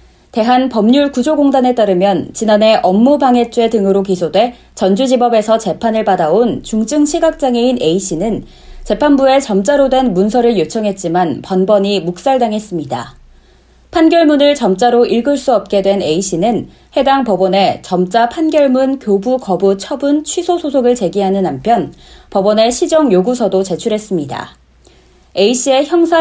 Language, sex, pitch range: Korean, female, 195-260 Hz